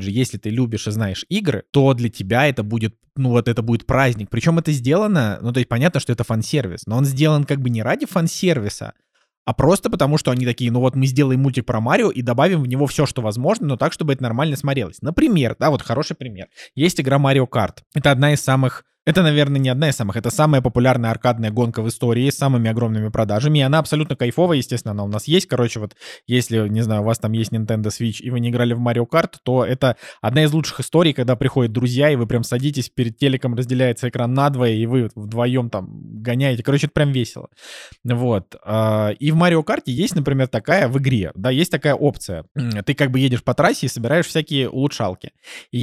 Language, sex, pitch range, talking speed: Russian, male, 115-145 Hz, 225 wpm